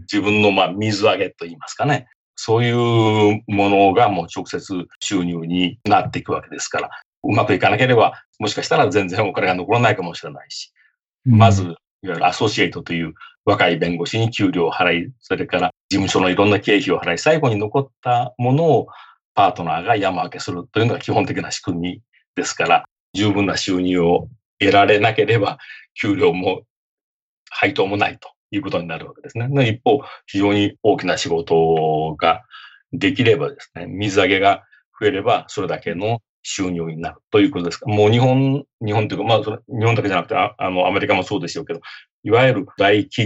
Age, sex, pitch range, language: 40-59, male, 90-120 Hz, Japanese